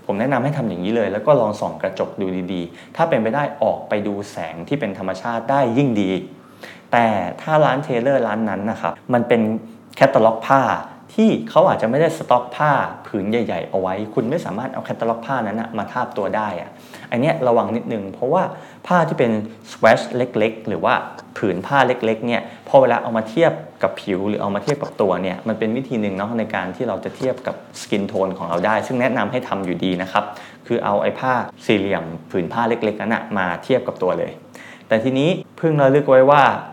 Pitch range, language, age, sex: 100-125 Hz, Thai, 20-39, male